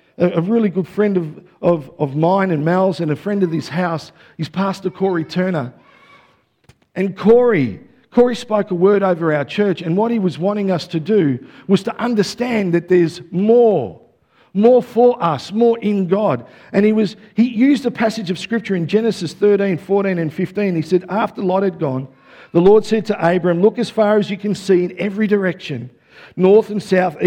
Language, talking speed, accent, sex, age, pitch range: English, 195 wpm, Australian, male, 50-69, 185-235 Hz